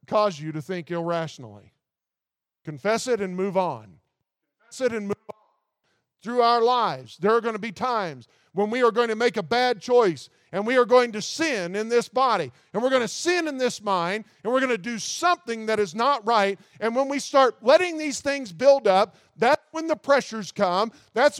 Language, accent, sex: English, American, male